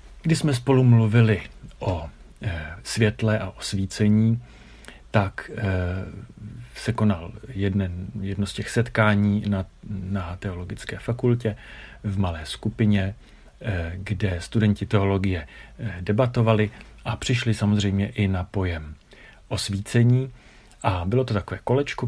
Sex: male